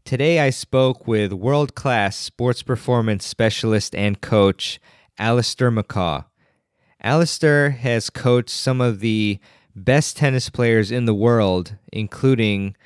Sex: male